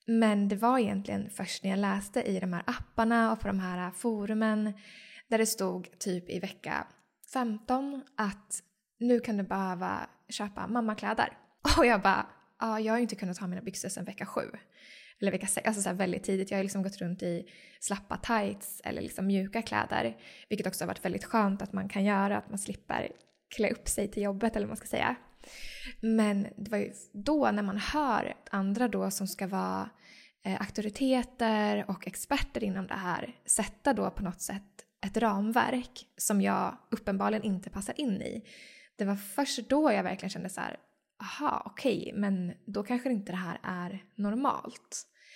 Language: Swedish